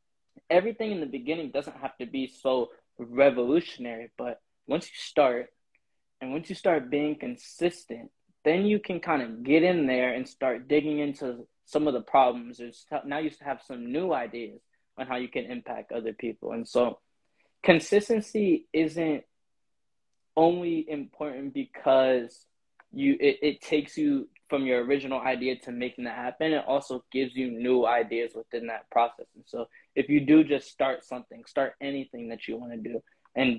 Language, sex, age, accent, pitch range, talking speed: English, male, 10-29, American, 120-155 Hz, 170 wpm